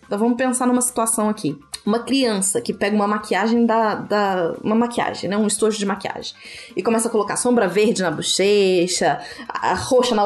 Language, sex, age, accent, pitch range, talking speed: Portuguese, female, 20-39, Brazilian, 180-245 Hz, 195 wpm